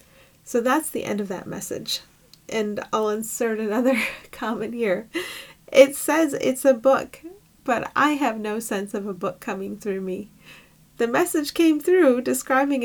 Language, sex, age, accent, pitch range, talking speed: English, female, 30-49, American, 200-245 Hz, 160 wpm